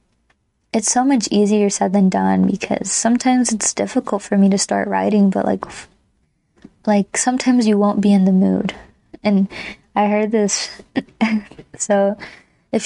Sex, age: female, 20-39